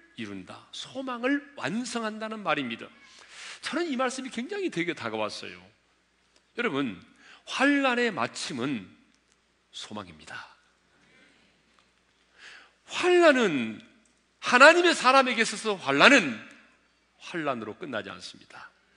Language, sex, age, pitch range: Korean, male, 40-59, 195-245 Hz